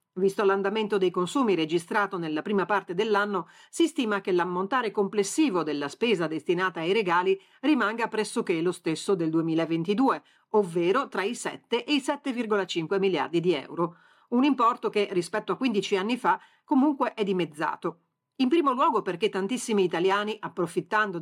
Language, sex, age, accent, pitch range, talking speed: Italian, female, 40-59, native, 180-255 Hz, 150 wpm